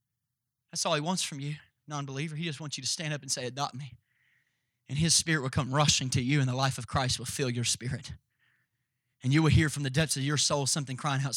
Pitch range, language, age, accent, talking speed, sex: 125-145 Hz, English, 30-49, American, 255 wpm, male